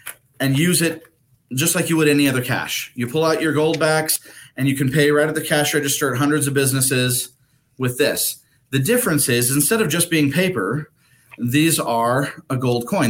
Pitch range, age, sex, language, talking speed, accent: 130-160 Hz, 30-49, male, English, 200 wpm, American